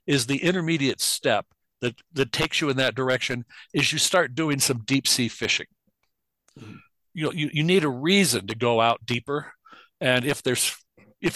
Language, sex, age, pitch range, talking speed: English, male, 60-79, 125-150 Hz, 180 wpm